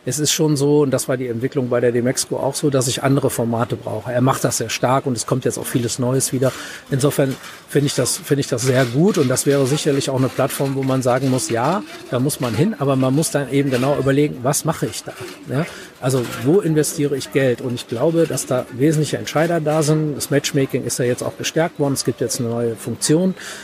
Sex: male